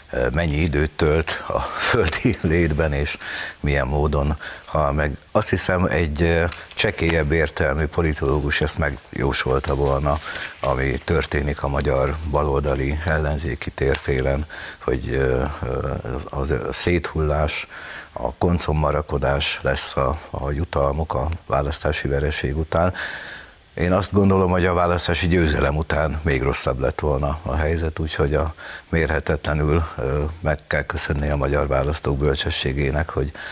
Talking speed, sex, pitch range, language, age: 115 wpm, male, 70-85 Hz, Hungarian, 60-79